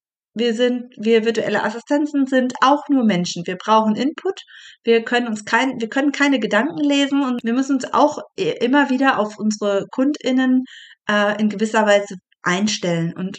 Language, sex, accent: German, female, German